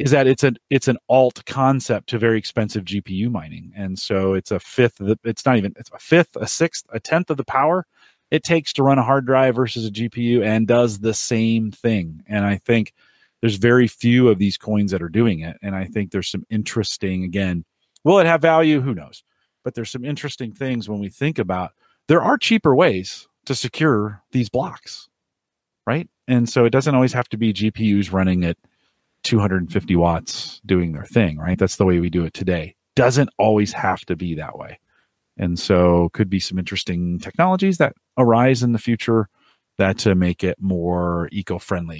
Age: 40-59